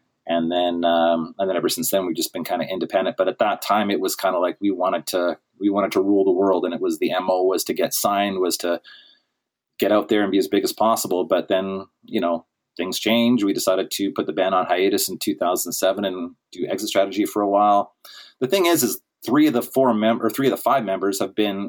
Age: 30-49